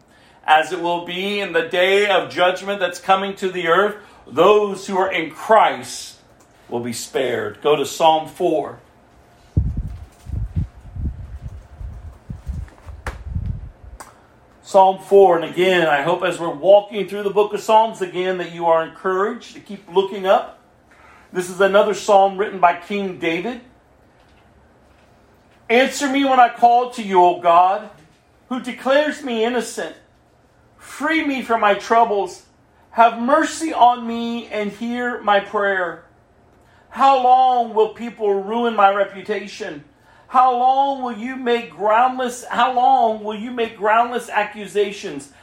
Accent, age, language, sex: American, 40-59, English, male